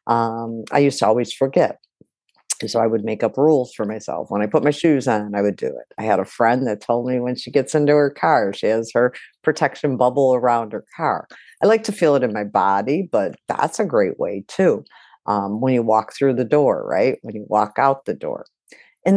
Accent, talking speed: American, 230 wpm